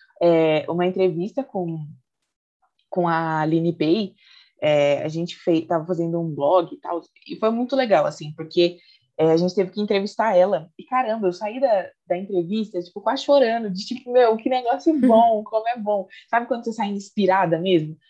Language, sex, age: Portuguese, female, 20-39